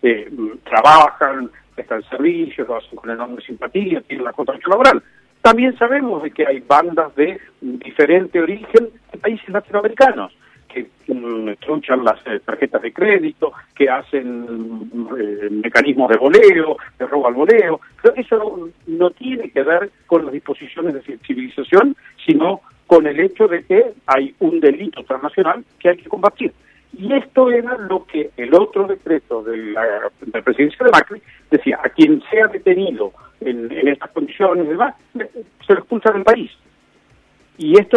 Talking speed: 160 wpm